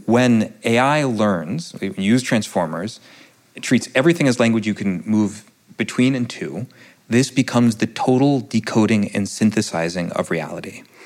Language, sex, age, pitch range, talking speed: English, male, 30-49, 100-125 Hz, 145 wpm